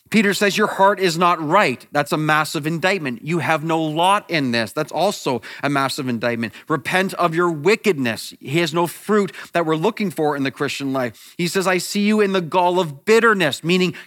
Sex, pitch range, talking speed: male, 170-280 Hz, 210 wpm